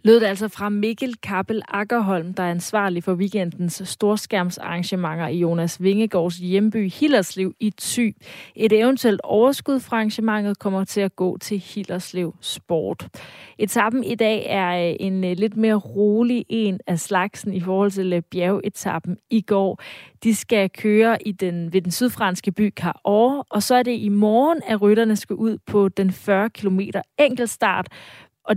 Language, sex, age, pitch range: Danish, female, 30-49, 185-220 Hz